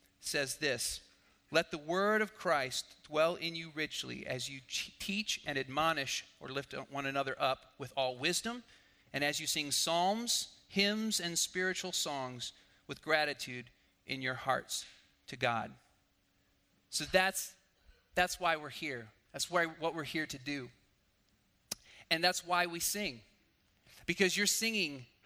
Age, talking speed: 40-59, 145 wpm